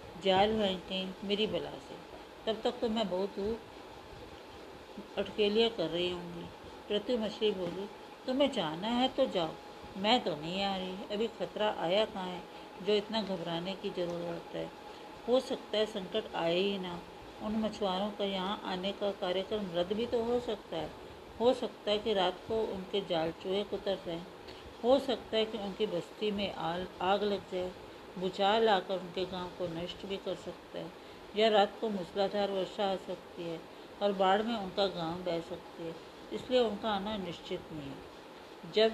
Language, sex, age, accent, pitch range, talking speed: Hindi, female, 50-69, native, 180-215 Hz, 170 wpm